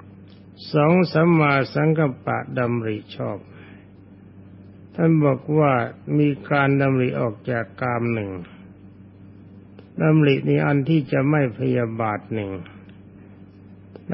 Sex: male